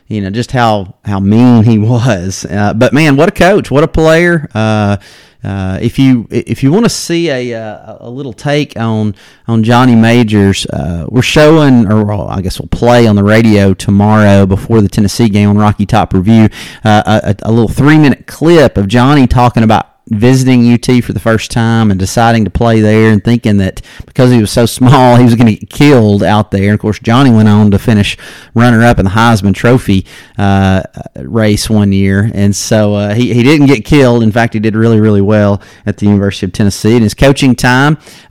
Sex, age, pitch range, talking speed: male, 30-49, 105-125 Hz, 205 wpm